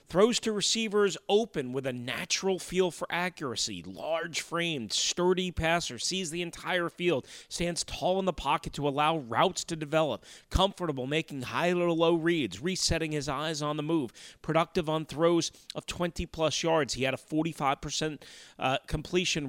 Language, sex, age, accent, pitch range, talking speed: English, male, 30-49, American, 140-185 Hz, 165 wpm